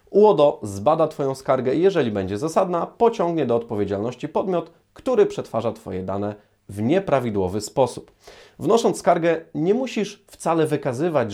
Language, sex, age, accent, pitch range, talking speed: Polish, male, 30-49, native, 105-145 Hz, 130 wpm